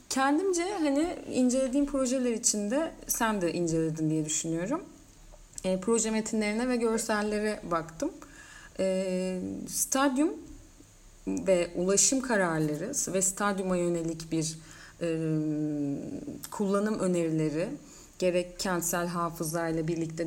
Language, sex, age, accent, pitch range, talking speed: Turkish, female, 30-49, native, 170-220 Hz, 90 wpm